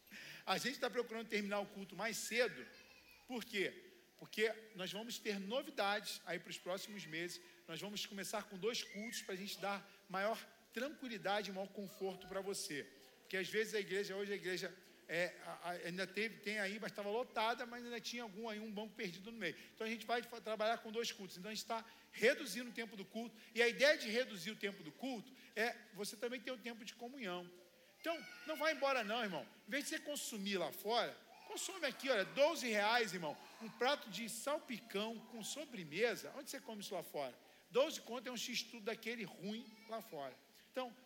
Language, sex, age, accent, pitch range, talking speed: Portuguese, male, 50-69, Brazilian, 200-245 Hz, 200 wpm